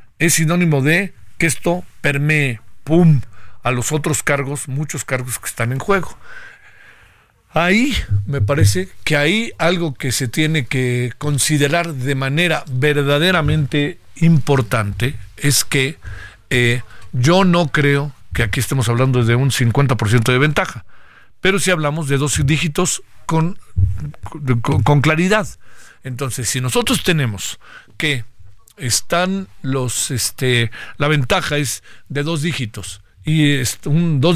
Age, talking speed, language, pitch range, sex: 50-69, 130 wpm, Spanish, 125-165 Hz, male